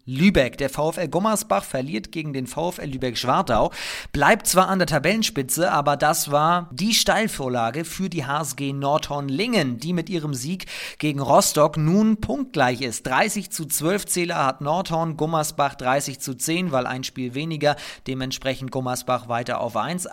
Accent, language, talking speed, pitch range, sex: German, German, 150 wpm, 135-175 Hz, male